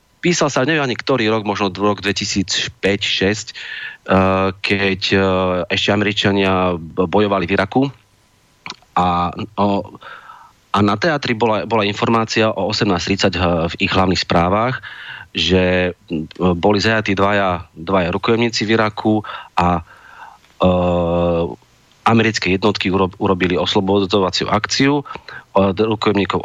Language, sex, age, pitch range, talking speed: Slovak, male, 30-49, 90-110 Hz, 95 wpm